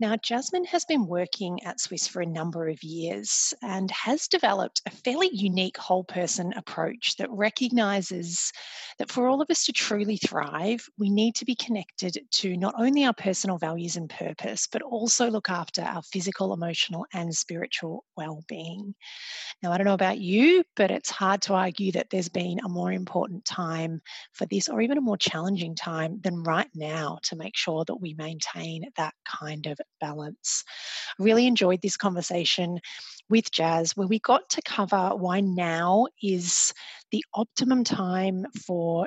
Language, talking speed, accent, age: English, 170 wpm, Australian, 30-49